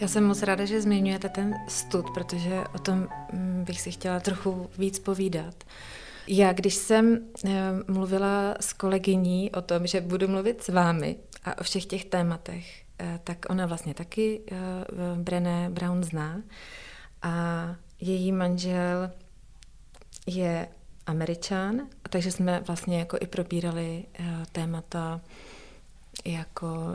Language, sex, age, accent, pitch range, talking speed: Czech, female, 30-49, native, 175-195 Hz, 120 wpm